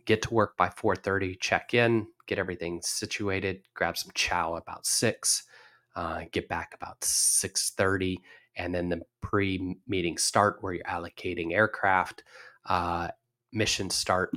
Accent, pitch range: American, 90-115 Hz